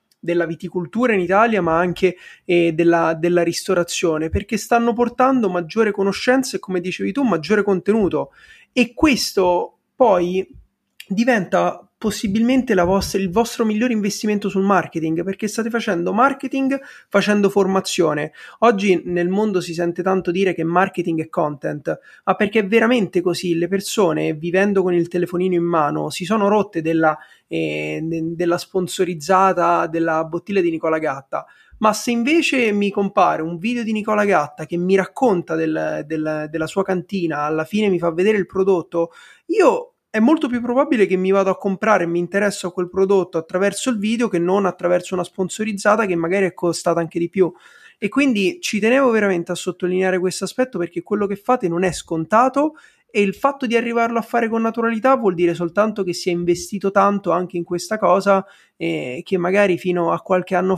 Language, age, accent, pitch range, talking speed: Italian, 30-49, native, 170-210 Hz, 175 wpm